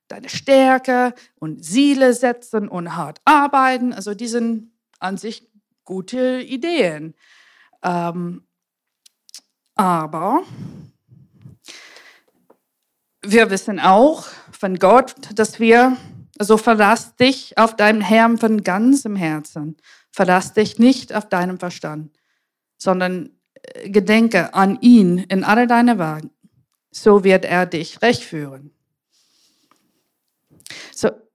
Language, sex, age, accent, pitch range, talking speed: German, female, 50-69, German, 180-235 Hz, 105 wpm